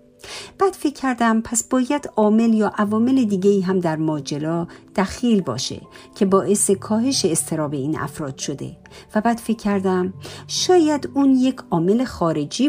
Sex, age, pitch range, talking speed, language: female, 50-69, 165-230 Hz, 145 wpm, Persian